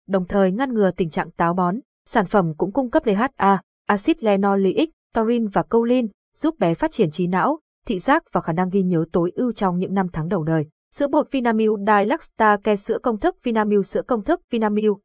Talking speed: 210 wpm